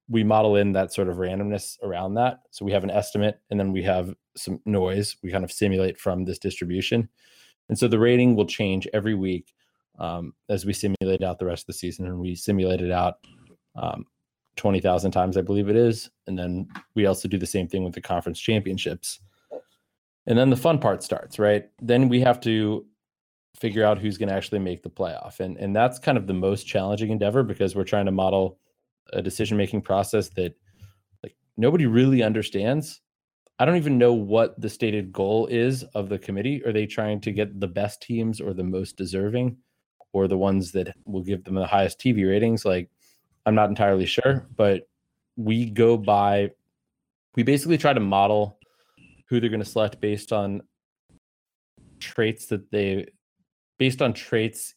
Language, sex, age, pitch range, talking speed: English, male, 20-39, 95-115 Hz, 190 wpm